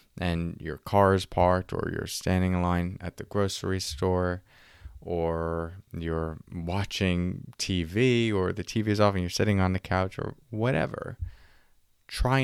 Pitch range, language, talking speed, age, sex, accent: 90-125 Hz, English, 155 wpm, 20-39, male, American